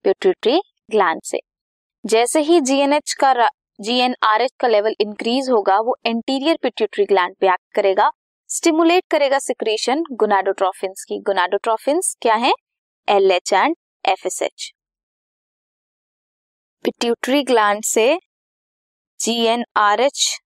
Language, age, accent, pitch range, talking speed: Hindi, 20-39, native, 220-305 Hz, 70 wpm